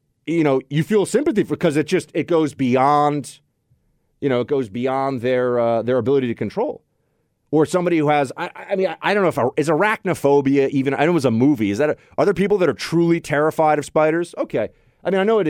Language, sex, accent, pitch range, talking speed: English, male, American, 120-180 Hz, 235 wpm